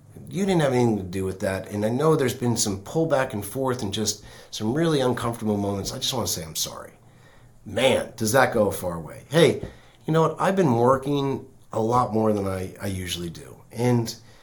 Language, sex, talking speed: English, male, 220 wpm